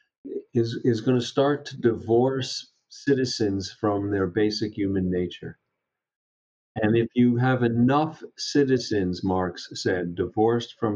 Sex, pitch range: male, 95-120 Hz